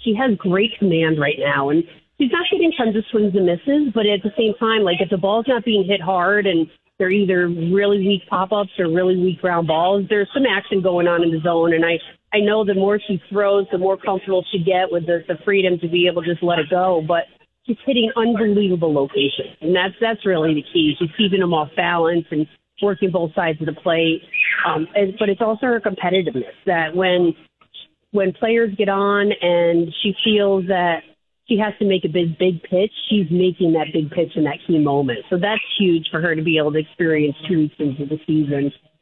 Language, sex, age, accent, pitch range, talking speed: English, female, 40-59, American, 160-200 Hz, 220 wpm